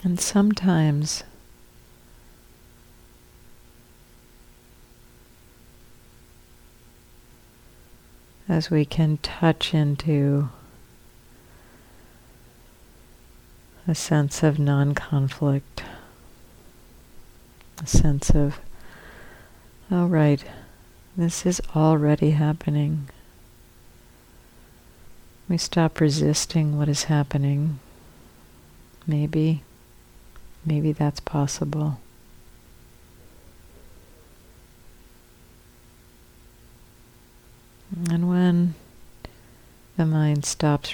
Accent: American